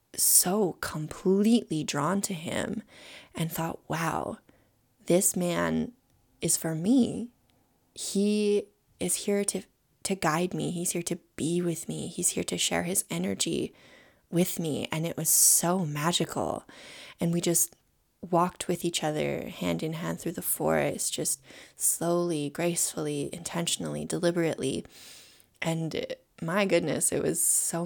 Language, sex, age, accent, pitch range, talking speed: English, female, 20-39, American, 155-185 Hz, 135 wpm